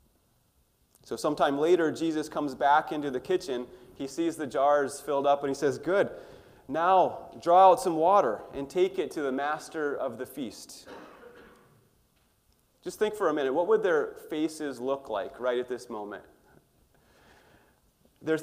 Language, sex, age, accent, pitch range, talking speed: English, male, 30-49, American, 140-185 Hz, 160 wpm